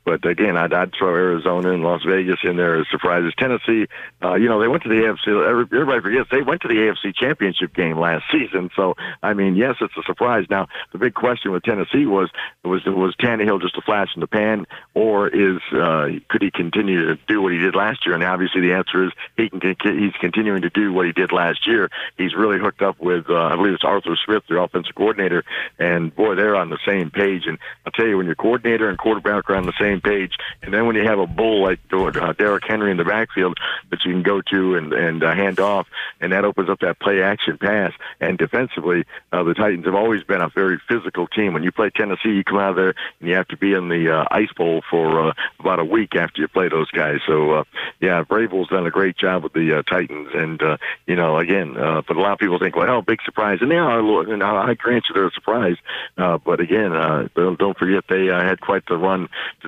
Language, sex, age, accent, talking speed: English, male, 60-79, American, 245 wpm